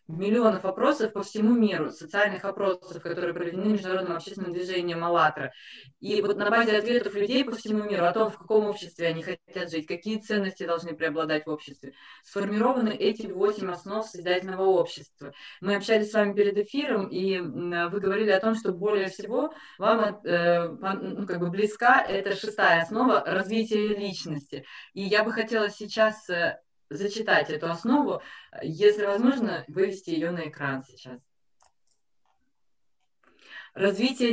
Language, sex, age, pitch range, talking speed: Russian, female, 20-39, 170-210 Hz, 145 wpm